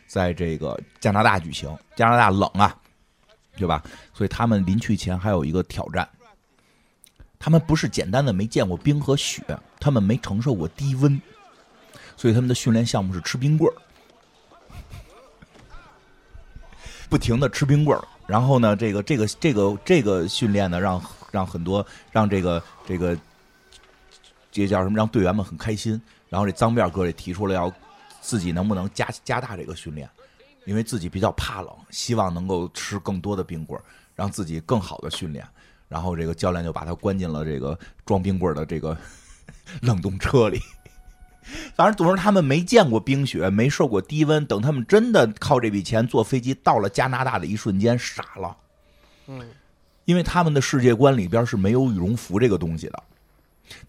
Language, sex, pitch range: Chinese, male, 90-125 Hz